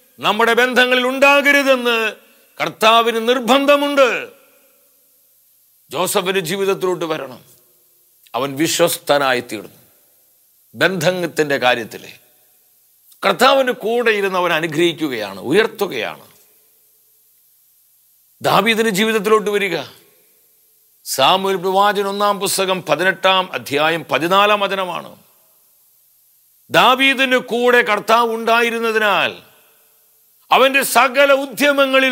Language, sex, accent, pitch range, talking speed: English, male, Indian, 195-265 Hz, 65 wpm